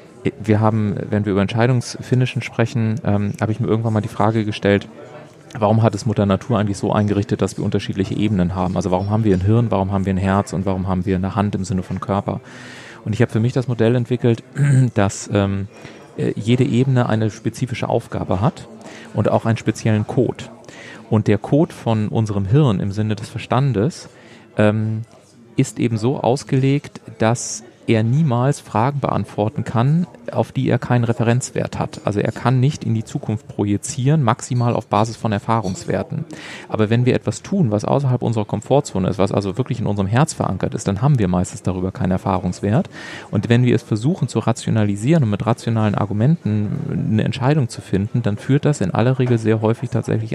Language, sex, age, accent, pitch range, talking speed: German, male, 30-49, German, 105-125 Hz, 190 wpm